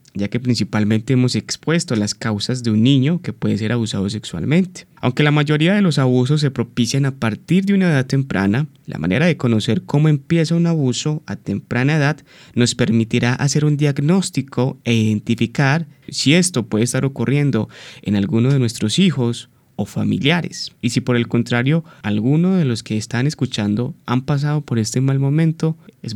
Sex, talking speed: male, 175 wpm